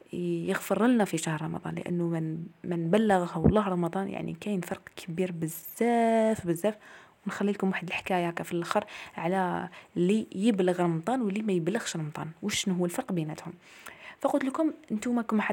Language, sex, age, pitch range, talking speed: Arabic, female, 20-39, 175-215 Hz, 155 wpm